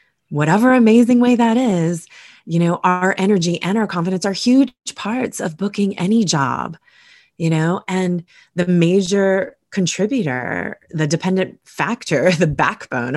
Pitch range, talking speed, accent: 135-175 Hz, 135 wpm, American